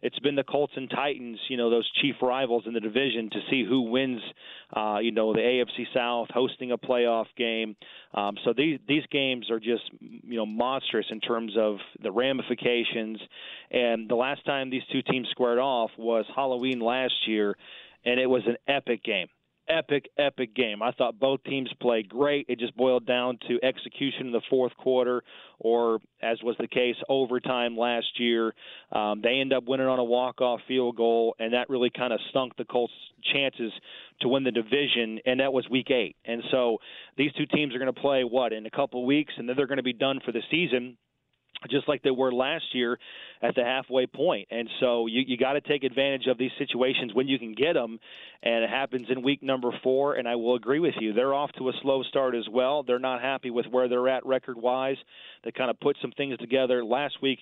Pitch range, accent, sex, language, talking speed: 120-135 Hz, American, male, English, 215 wpm